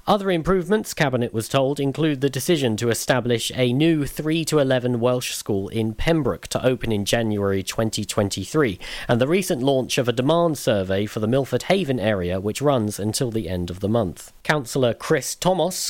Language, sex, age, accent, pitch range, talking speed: English, male, 40-59, British, 110-135 Hz, 175 wpm